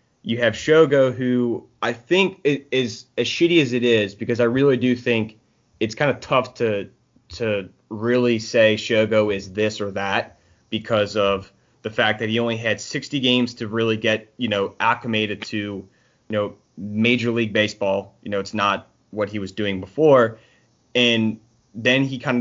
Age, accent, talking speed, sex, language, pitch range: 20-39, American, 175 wpm, male, English, 105-125 Hz